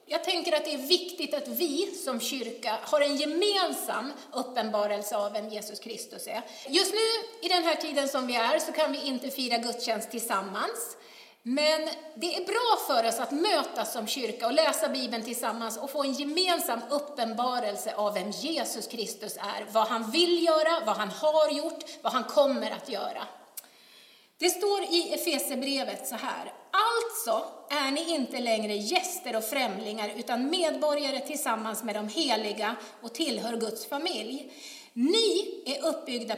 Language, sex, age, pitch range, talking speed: Swedish, female, 30-49, 225-330 Hz, 165 wpm